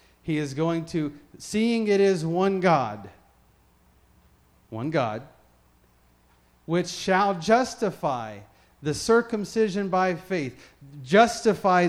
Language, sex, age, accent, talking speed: English, male, 40-59, American, 95 wpm